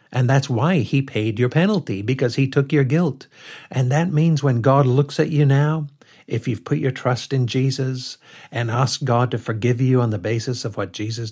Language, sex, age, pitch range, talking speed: English, male, 60-79, 125-155 Hz, 210 wpm